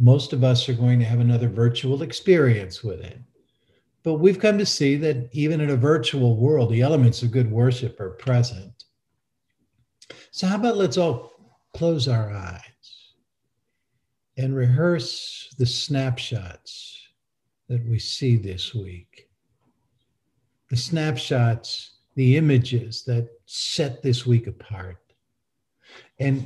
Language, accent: English, American